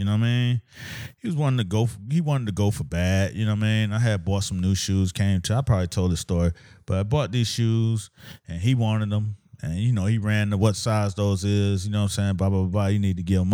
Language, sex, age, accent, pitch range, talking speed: English, male, 30-49, American, 100-130 Hz, 300 wpm